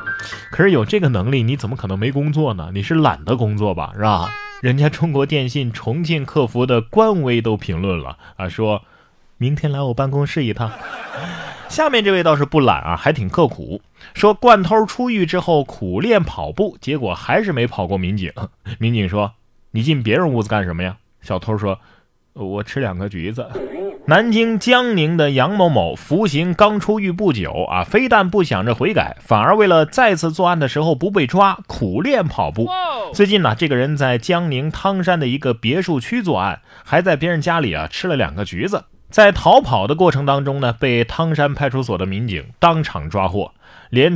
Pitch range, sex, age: 105-170 Hz, male, 20-39